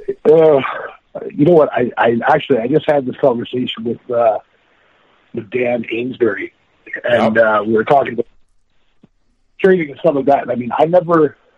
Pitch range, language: 110-140 Hz, English